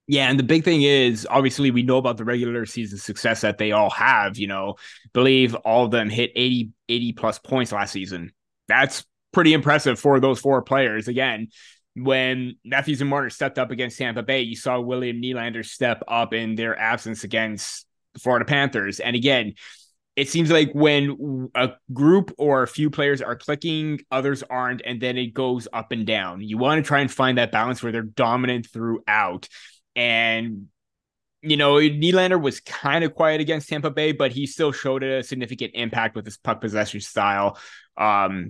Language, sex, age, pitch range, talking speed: English, male, 20-39, 115-140 Hz, 185 wpm